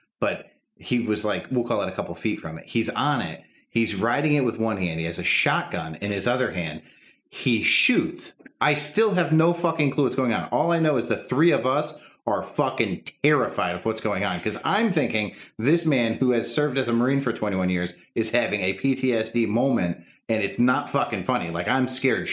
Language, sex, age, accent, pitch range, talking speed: English, male, 30-49, American, 115-170 Hz, 220 wpm